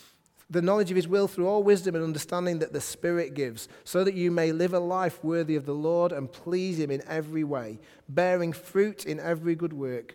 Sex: male